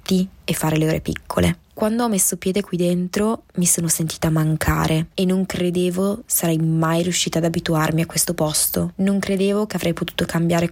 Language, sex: Italian, female